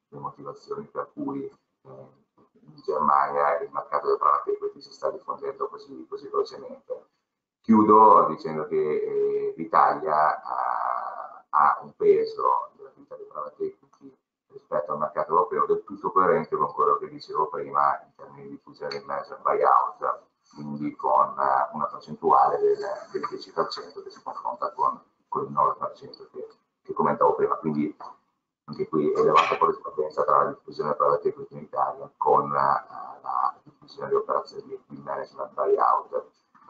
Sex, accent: male, native